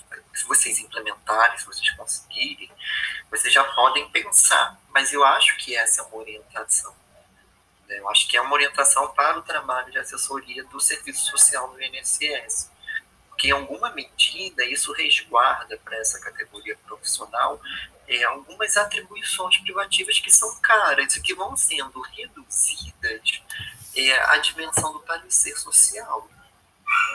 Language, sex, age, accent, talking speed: Portuguese, male, 20-39, Brazilian, 140 wpm